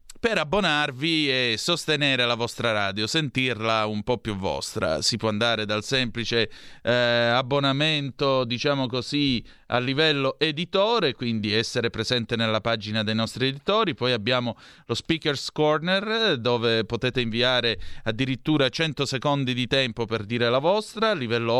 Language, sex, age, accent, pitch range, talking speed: Italian, male, 30-49, native, 115-155 Hz, 140 wpm